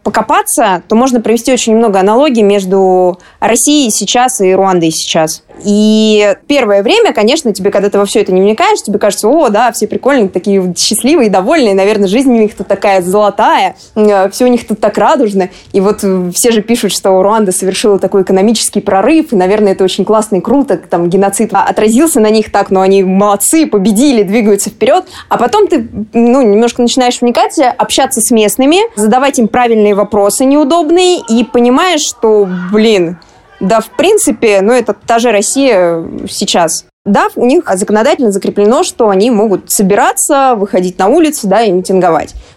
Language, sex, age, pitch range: Russian, female, 20-39, 200-255 Hz